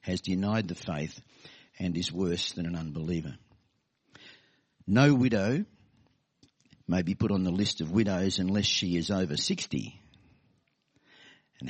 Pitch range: 90-110 Hz